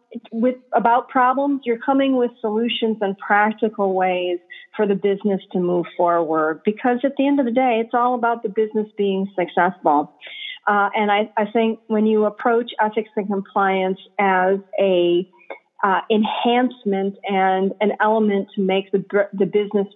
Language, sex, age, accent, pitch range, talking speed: English, female, 40-59, American, 190-235 Hz, 160 wpm